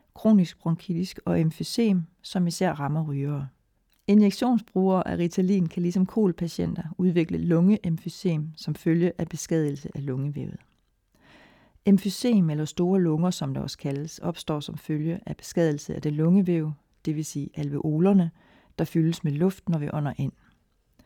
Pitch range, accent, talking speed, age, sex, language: 155-190 Hz, native, 135 wpm, 40-59, female, Danish